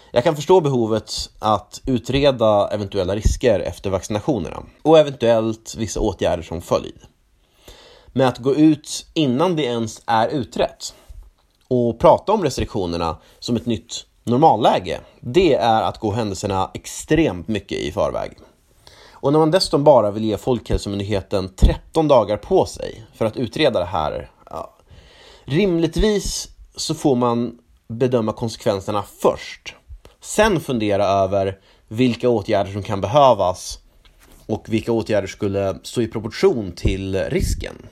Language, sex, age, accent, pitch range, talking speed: Swedish, male, 30-49, native, 100-125 Hz, 135 wpm